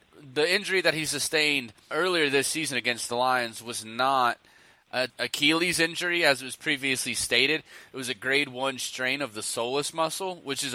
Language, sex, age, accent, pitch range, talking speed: English, male, 20-39, American, 120-145 Hz, 180 wpm